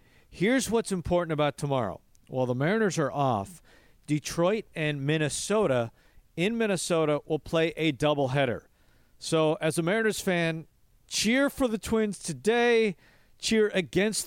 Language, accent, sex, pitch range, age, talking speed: English, American, male, 125-160 Hz, 40-59, 130 wpm